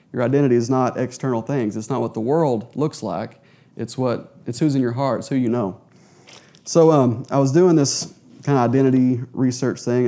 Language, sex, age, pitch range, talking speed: English, male, 30-49, 115-135 Hz, 210 wpm